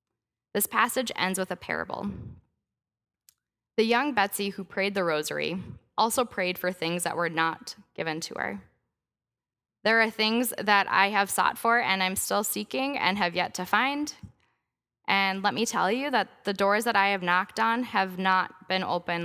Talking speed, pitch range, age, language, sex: 180 wpm, 165-215 Hz, 10-29, English, female